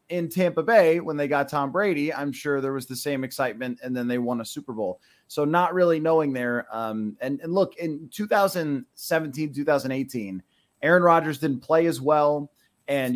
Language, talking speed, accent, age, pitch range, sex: English, 185 wpm, American, 30-49, 140-175 Hz, male